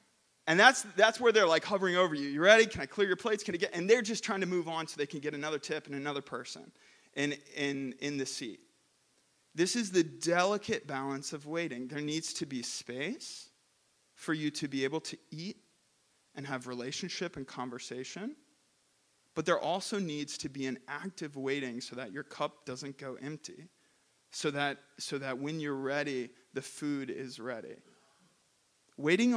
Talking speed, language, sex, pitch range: 190 wpm, English, male, 135-170 Hz